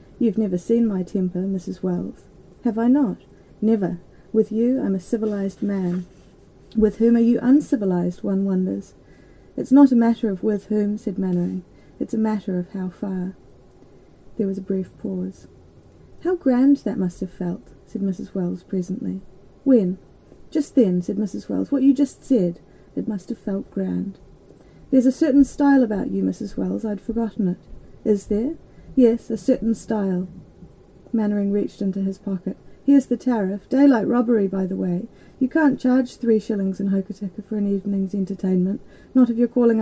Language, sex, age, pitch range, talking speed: English, female, 30-49, 190-240 Hz, 170 wpm